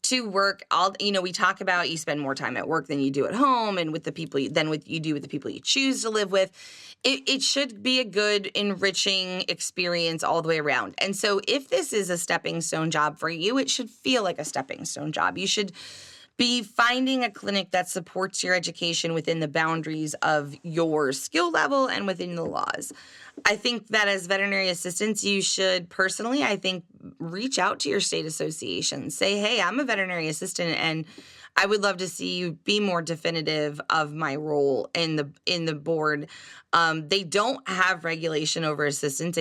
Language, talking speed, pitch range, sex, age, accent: English, 205 wpm, 160-210 Hz, female, 20-39, American